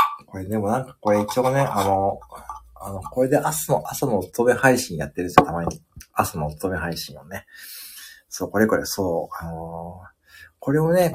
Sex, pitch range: male, 95-145 Hz